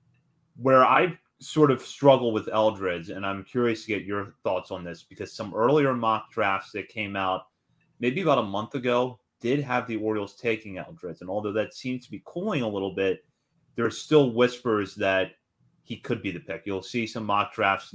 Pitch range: 100-125 Hz